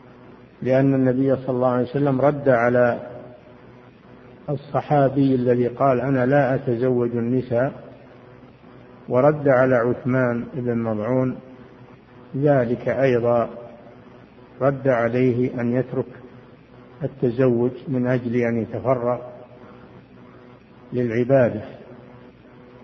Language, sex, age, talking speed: Arabic, male, 50-69, 85 wpm